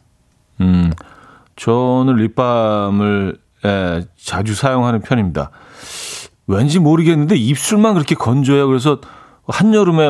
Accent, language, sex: native, Korean, male